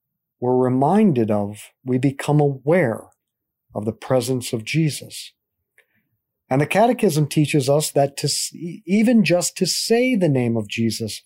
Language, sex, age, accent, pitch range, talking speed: English, male, 50-69, American, 125-175 Hz, 140 wpm